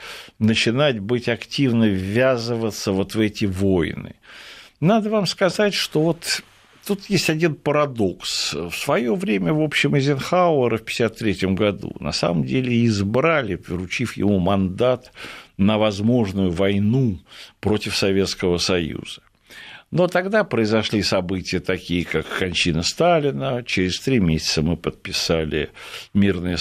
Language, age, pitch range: Russian, 60-79, 95-140 Hz